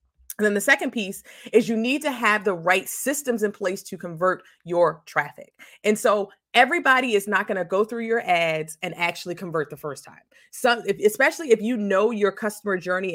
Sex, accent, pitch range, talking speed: female, American, 175-230 Hz, 205 wpm